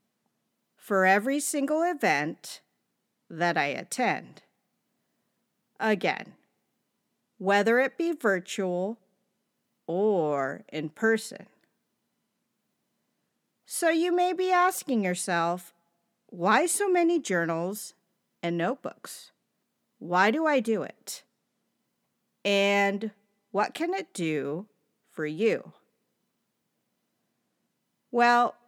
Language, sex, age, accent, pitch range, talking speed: English, female, 40-59, American, 185-250 Hz, 85 wpm